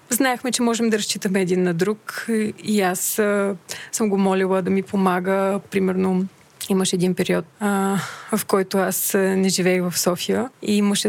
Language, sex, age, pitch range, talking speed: Bulgarian, female, 20-39, 190-225 Hz, 170 wpm